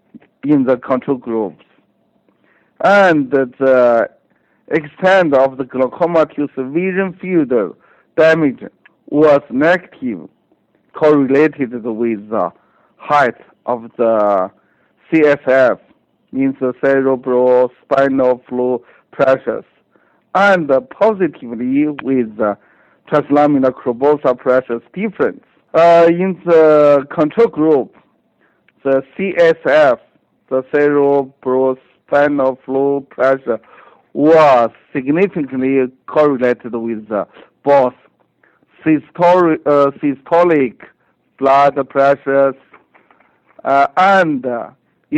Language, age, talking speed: English, 60-79, 85 wpm